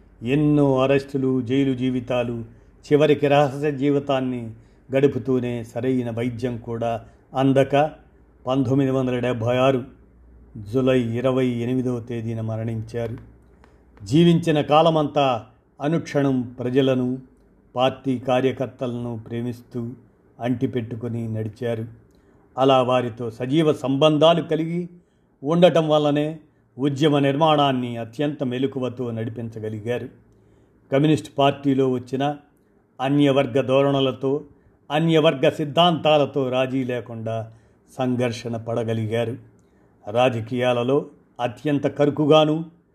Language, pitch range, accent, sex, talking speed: Telugu, 120-145 Hz, native, male, 80 wpm